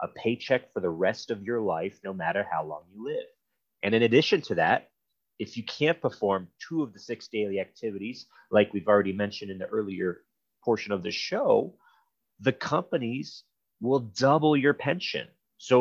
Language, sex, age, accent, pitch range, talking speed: English, male, 30-49, American, 105-140 Hz, 180 wpm